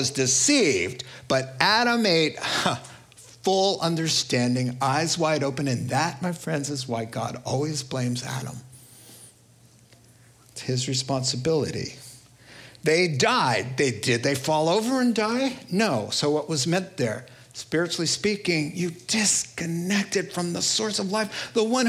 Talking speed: 130 wpm